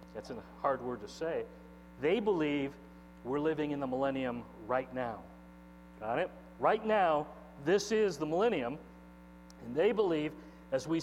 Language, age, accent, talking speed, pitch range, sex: English, 40-59, American, 150 wpm, 110-175 Hz, male